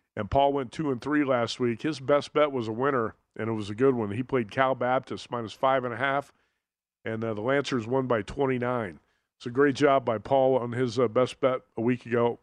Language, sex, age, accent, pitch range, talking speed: English, male, 50-69, American, 120-150 Hz, 245 wpm